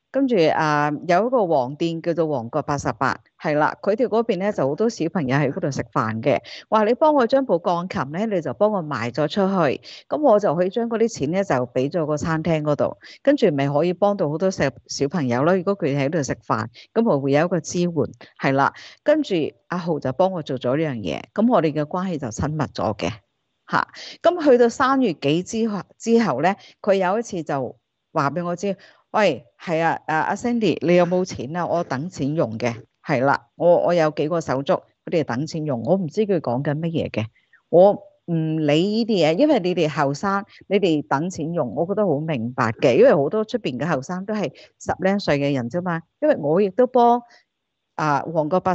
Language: Chinese